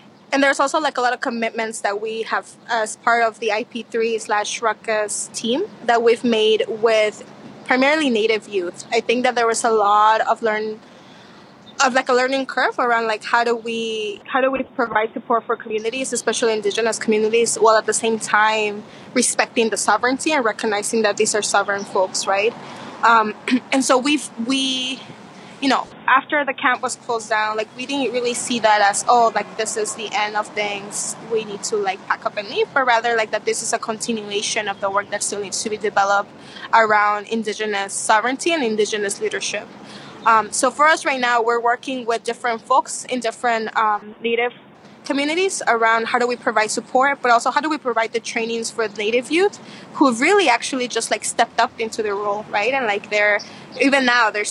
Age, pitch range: 20-39, 215-255 Hz